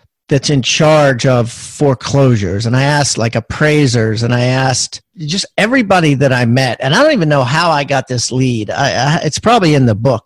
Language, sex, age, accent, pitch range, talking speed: English, male, 40-59, American, 125-165 Hz, 205 wpm